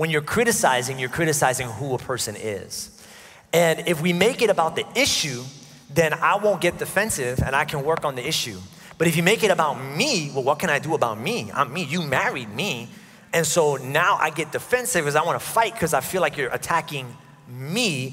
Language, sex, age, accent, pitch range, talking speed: English, male, 30-49, American, 135-180 Hz, 215 wpm